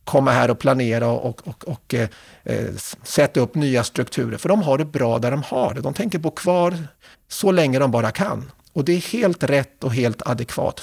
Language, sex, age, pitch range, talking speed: Swedish, male, 50-69, 130-180 Hz, 215 wpm